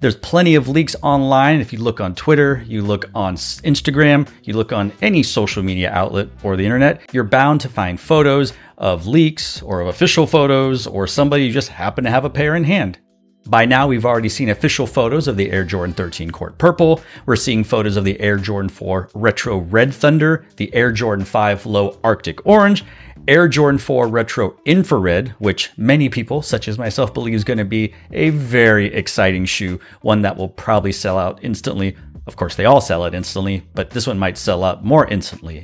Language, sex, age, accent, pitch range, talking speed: English, male, 30-49, American, 95-140 Hz, 200 wpm